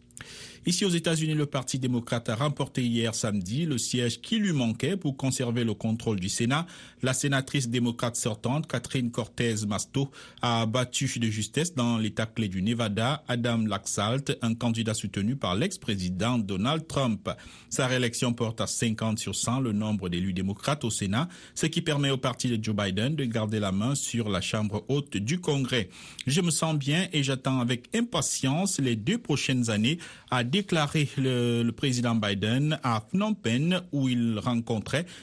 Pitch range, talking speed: 110-140 Hz, 170 wpm